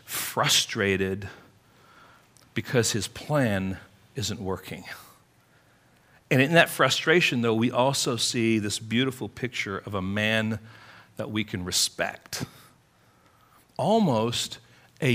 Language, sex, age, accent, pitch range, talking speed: English, male, 40-59, American, 110-145 Hz, 105 wpm